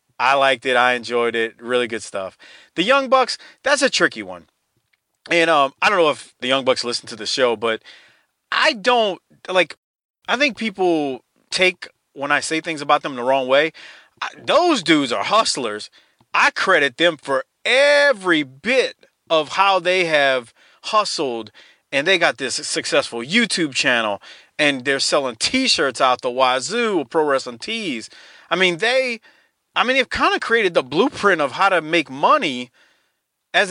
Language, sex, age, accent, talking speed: English, male, 30-49, American, 170 wpm